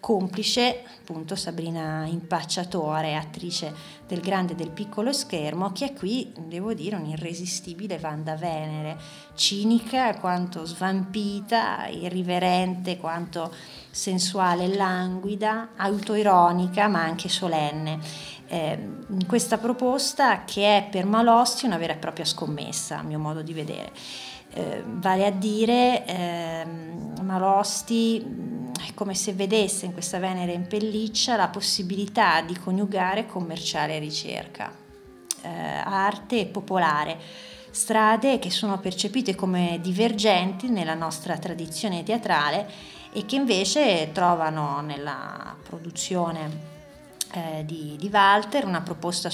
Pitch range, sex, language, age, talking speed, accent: 165-210 Hz, female, Italian, 30-49, 115 wpm, native